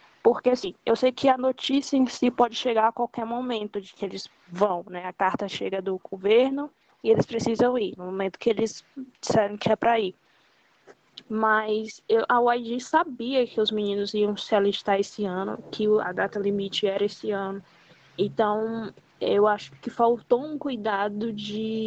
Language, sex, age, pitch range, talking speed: Portuguese, female, 20-39, 205-255 Hz, 180 wpm